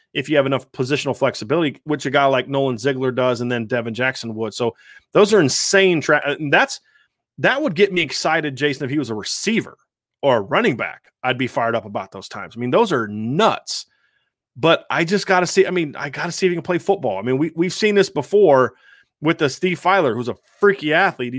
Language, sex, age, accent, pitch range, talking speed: English, male, 30-49, American, 125-175 Hz, 235 wpm